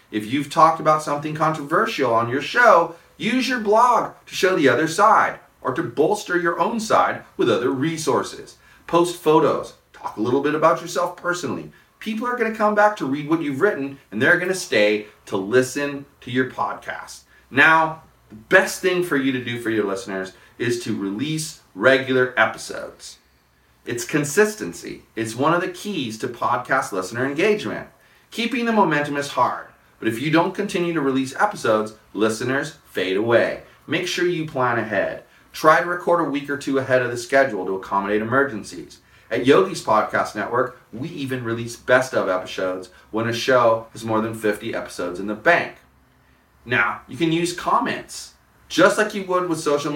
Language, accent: English, American